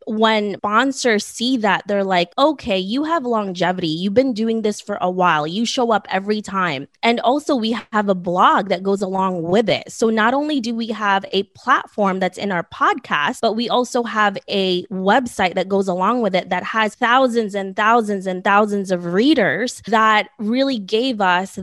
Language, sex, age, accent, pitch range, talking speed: English, female, 20-39, American, 190-235 Hz, 190 wpm